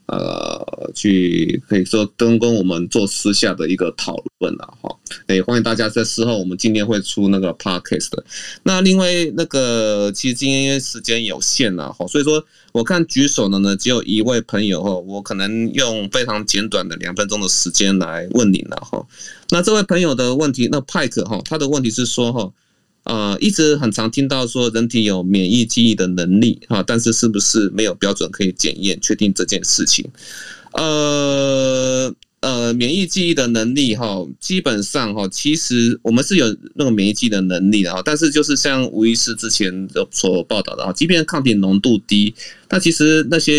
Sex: male